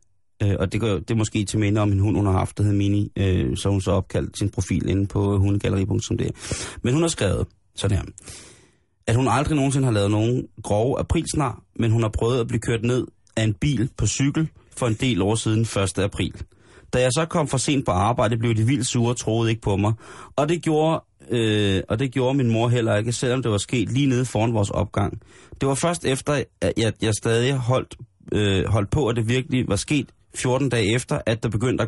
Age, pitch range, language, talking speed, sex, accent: 30-49, 100-125 Hz, Danish, 230 wpm, male, native